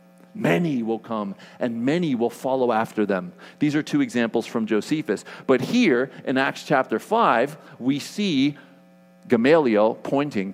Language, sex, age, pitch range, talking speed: English, male, 40-59, 105-160 Hz, 140 wpm